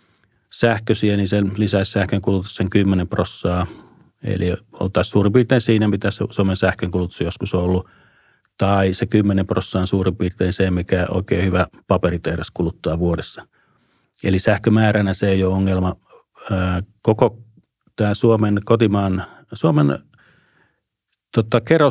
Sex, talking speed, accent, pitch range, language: male, 120 wpm, native, 90-105 Hz, Finnish